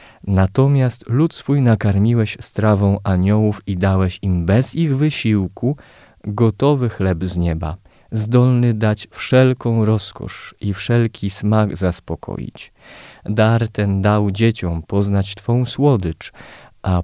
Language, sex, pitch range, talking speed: Polish, male, 95-115 Hz, 115 wpm